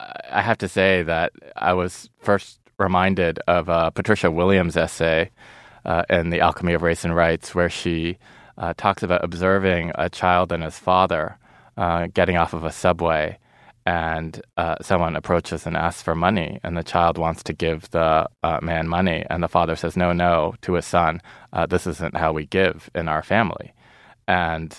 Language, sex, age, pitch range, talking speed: English, male, 20-39, 80-90 Hz, 185 wpm